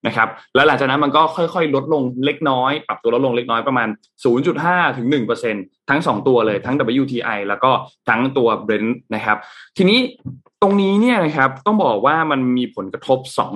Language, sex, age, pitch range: Thai, male, 20-39, 115-165 Hz